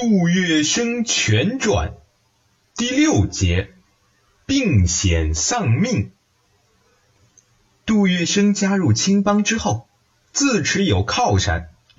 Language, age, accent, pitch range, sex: Chinese, 30-49, native, 100-145 Hz, male